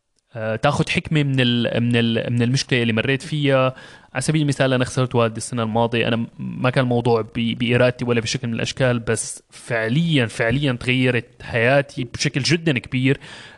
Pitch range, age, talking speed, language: 125-145 Hz, 20-39, 160 wpm, Arabic